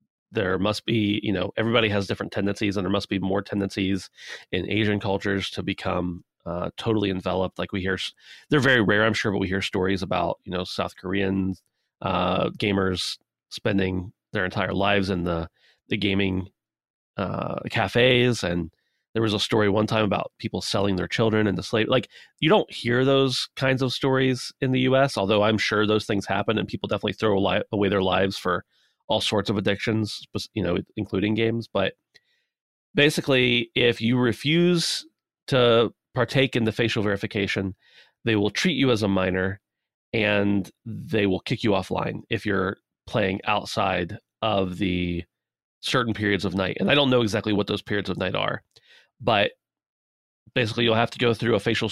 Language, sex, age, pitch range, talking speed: English, male, 30-49, 95-115 Hz, 175 wpm